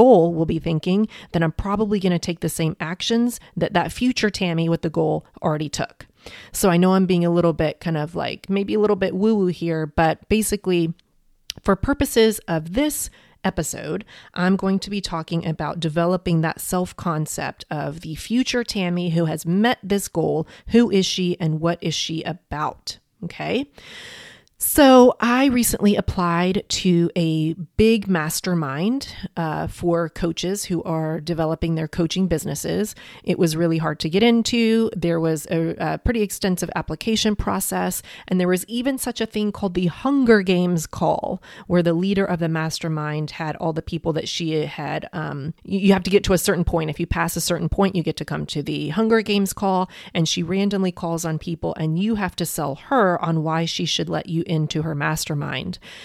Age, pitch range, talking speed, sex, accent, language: 30-49, 165-200 Hz, 190 wpm, female, American, English